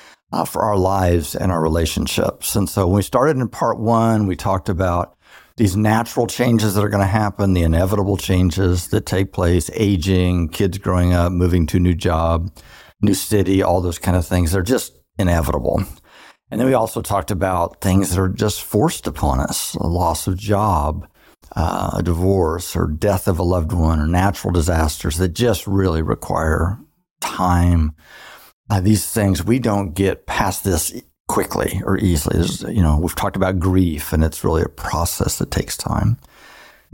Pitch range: 90-110 Hz